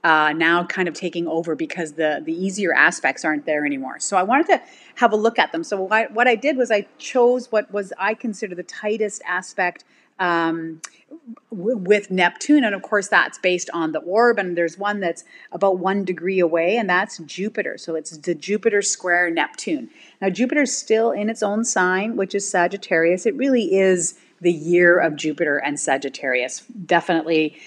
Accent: American